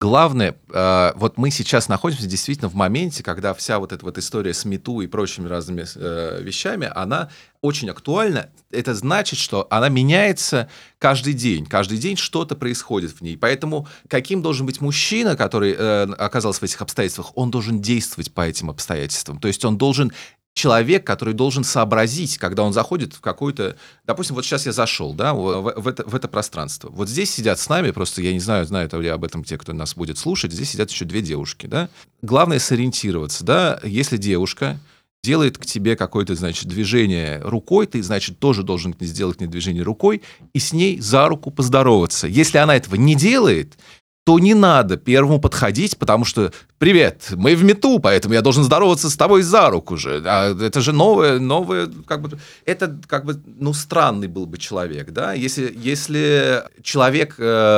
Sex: male